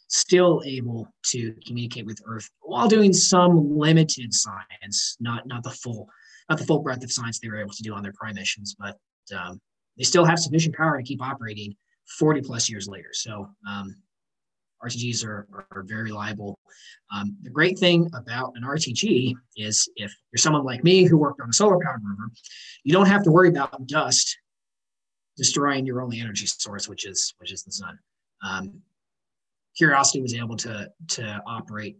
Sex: male